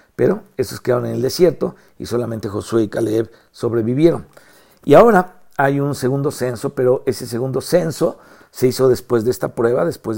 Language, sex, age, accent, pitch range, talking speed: Spanish, male, 50-69, Mexican, 115-150 Hz, 170 wpm